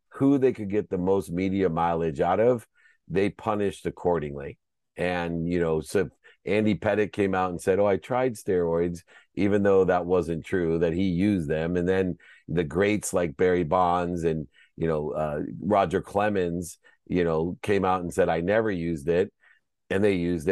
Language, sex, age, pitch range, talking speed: English, male, 50-69, 85-100 Hz, 180 wpm